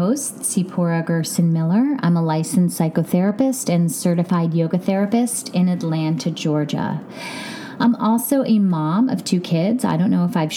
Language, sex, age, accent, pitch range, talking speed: English, female, 30-49, American, 165-230 Hz, 155 wpm